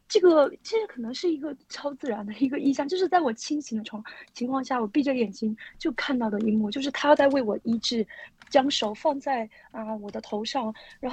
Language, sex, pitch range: Chinese, female, 230-315 Hz